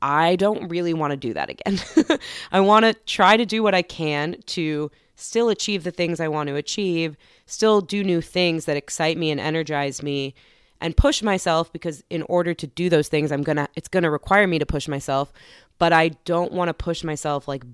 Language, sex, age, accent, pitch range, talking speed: English, female, 20-39, American, 150-180 Hz, 220 wpm